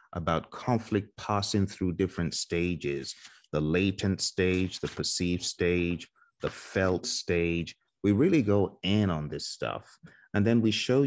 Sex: male